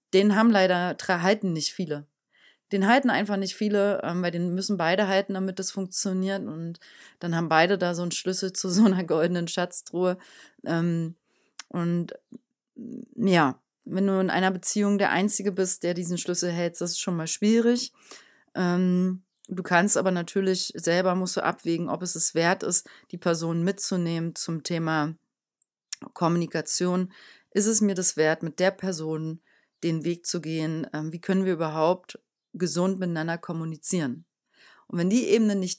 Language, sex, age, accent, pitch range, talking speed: German, female, 30-49, German, 170-195 Hz, 160 wpm